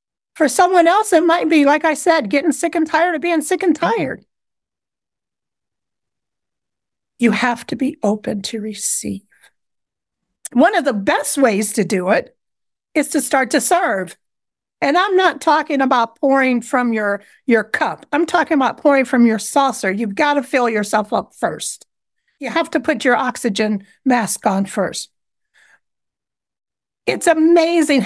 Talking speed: 155 wpm